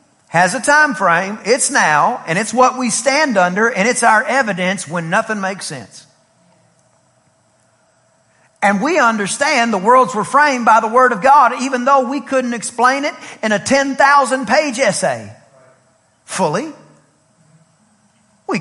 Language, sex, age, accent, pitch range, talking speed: English, male, 40-59, American, 180-255 Hz, 145 wpm